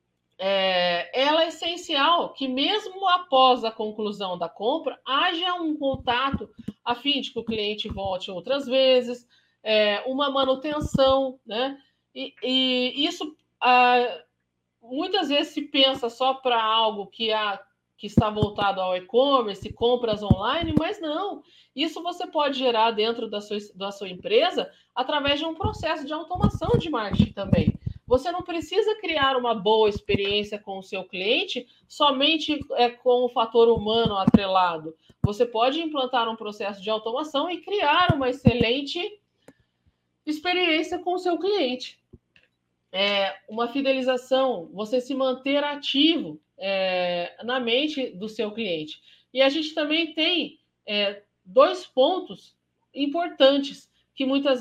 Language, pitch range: Portuguese, 215-295 Hz